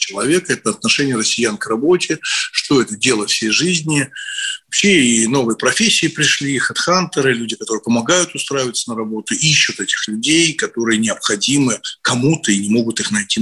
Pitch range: 115-195 Hz